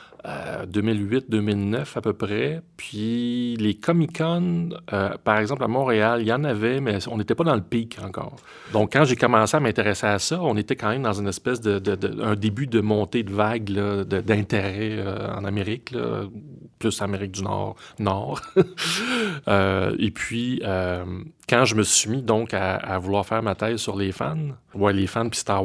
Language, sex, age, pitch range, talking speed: French, male, 30-49, 100-130 Hz, 190 wpm